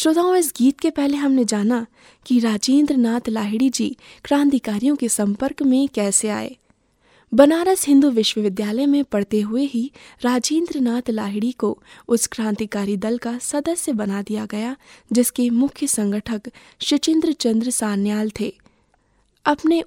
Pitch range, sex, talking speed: 220-285 Hz, female, 130 wpm